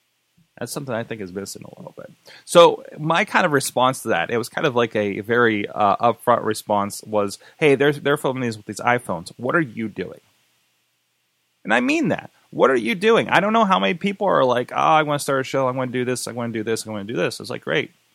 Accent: American